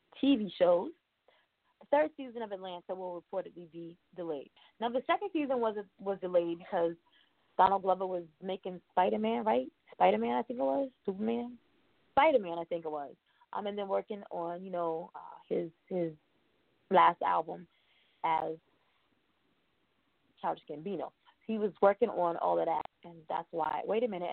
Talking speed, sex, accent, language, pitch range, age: 160 wpm, female, American, English, 170-220 Hz, 20-39